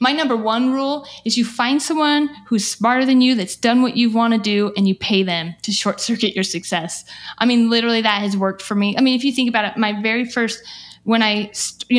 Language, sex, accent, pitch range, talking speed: English, female, American, 195-235 Hz, 240 wpm